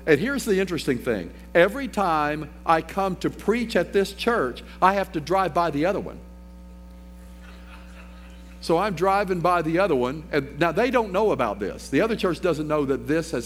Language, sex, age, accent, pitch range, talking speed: English, male, 50-69, American, 130-190 Hz, 195 wpm